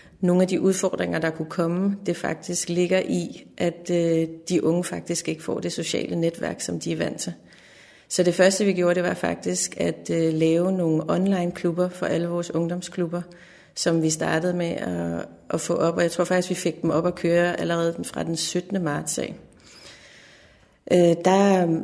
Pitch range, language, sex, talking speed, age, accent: 165-185 Hz, Danish, female, 180 wpm, 30-49, native